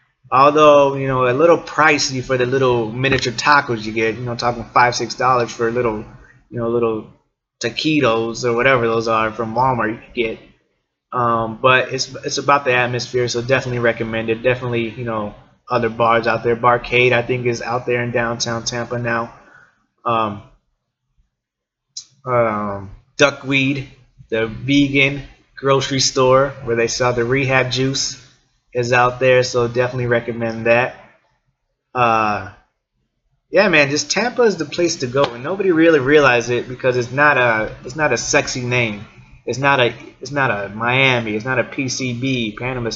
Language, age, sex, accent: English, 20-39, male, American